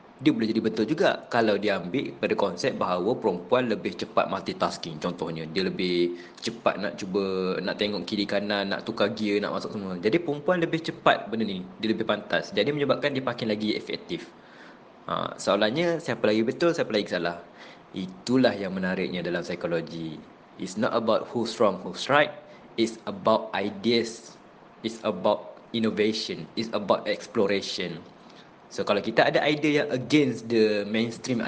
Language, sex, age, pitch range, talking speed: Malay, male, 20-39, 100-145 Hz, 160 wpm